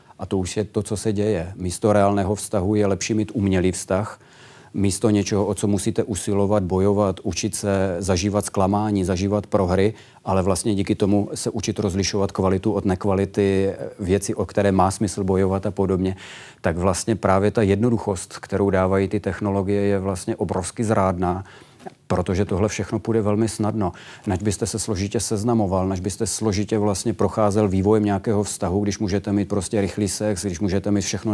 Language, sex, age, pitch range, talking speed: Czech, male, 40-59, 100-110 Hz, 170 wpm